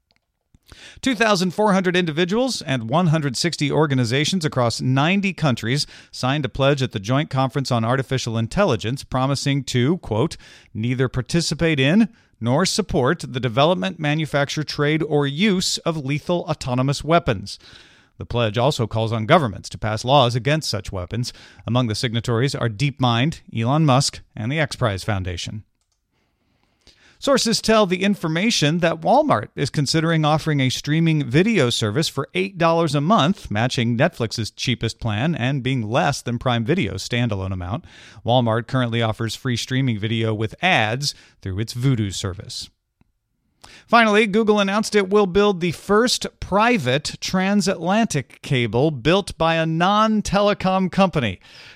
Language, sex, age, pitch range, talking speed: English, male, 40-59, 120-170 Hz, 135 wpm